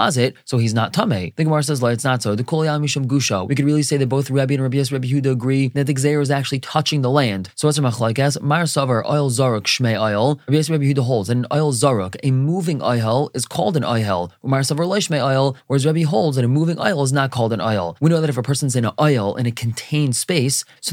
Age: 20-39